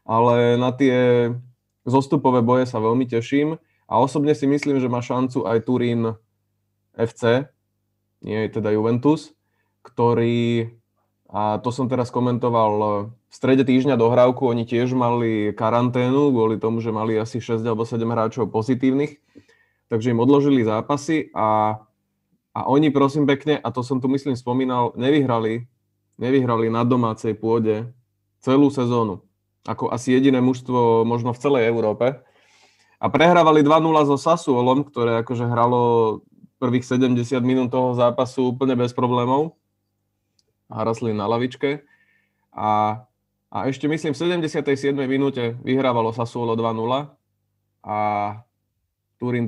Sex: male